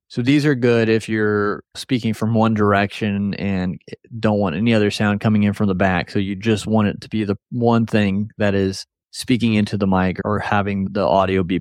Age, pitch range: 30-49, 100-115 Hz